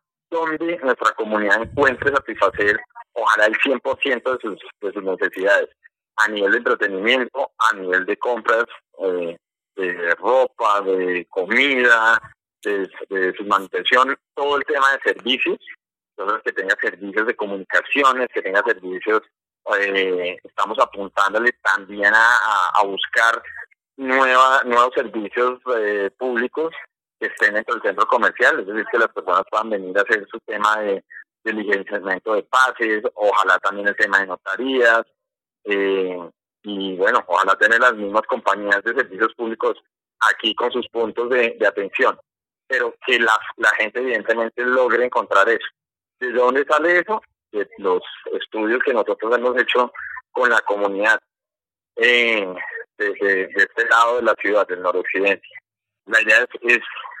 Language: Spanish